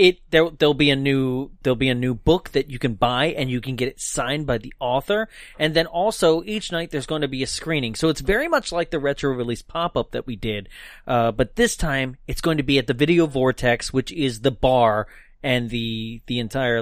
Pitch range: 120-155 Hz